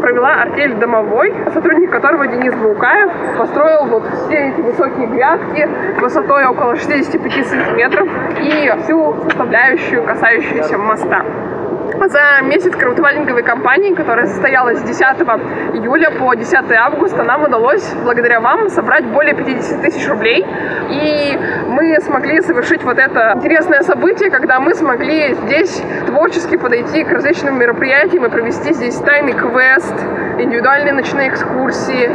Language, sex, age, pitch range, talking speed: Russian, female, 20-39, 260-335 Hz, 125 wpm